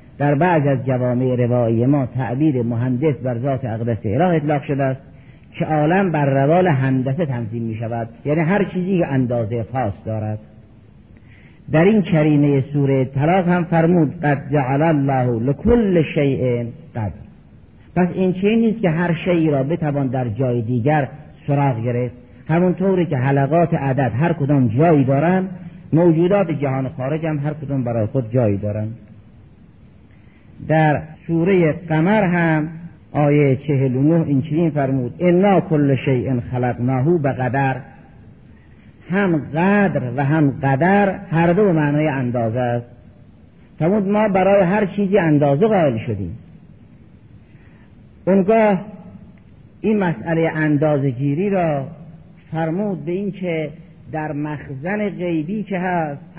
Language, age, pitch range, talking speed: Persian, 50-69, 130-170 Hz, 125 wpm